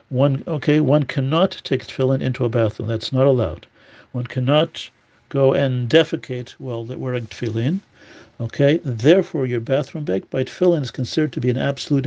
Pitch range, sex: 120-145 Hz, male